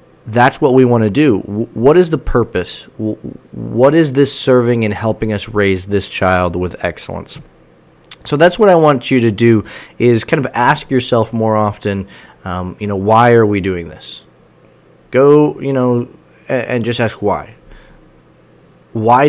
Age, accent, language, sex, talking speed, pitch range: 20-39, American, English, male, 170 wpm, 100-130 Hz